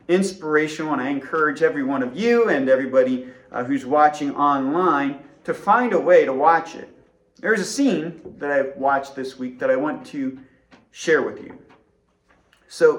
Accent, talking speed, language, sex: American, 170 wpm, English, male